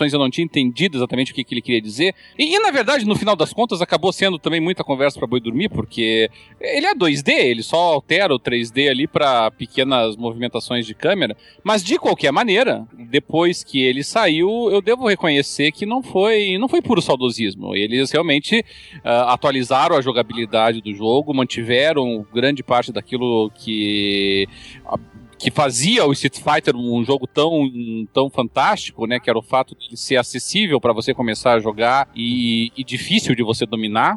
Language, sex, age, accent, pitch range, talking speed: Portuguese, male, 40-59, Brazilian, 110-150 Hz, 175 wpm